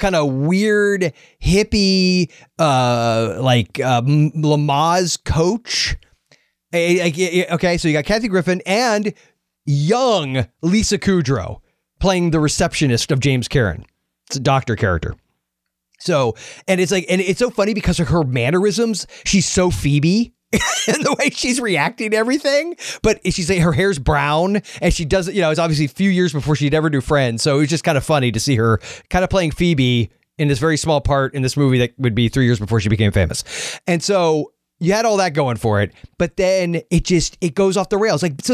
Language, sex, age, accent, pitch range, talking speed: English, male, 30-49, American, 135-185 Hz, 195 wpm